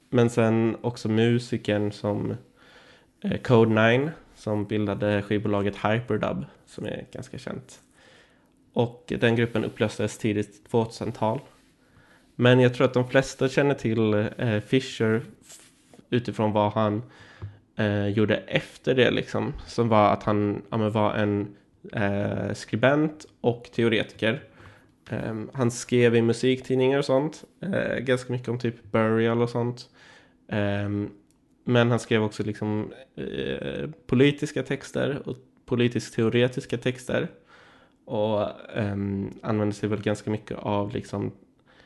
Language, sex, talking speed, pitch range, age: Swedish, male, 120 wpm, 105-125 Hz, 20-39